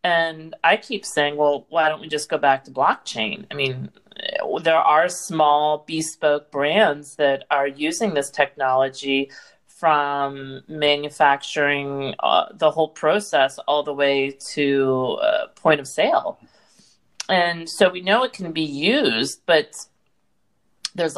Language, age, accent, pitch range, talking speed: English, 40-59, American, 140-175 Hz, 140 wpm